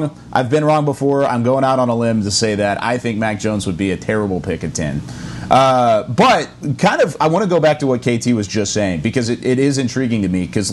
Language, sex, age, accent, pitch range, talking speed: English, male, 30-49, American, 95-135 Hz, 265 wpm